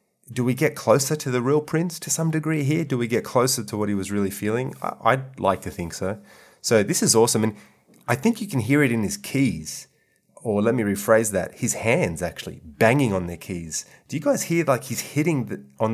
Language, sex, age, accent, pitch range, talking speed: English, male, 30-49, Australian, 95-130 Hz, 230 wpm